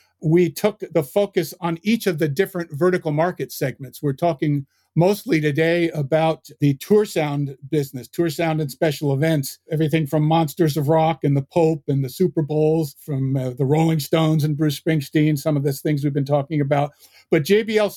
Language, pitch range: English, 145-170 Hz